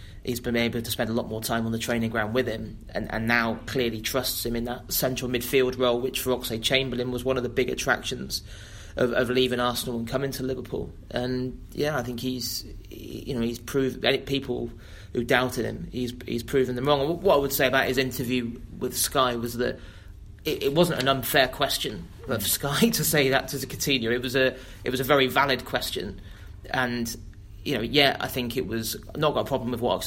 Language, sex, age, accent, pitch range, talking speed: English, male, 30-49, British, 115-130 Hz, 225 wpm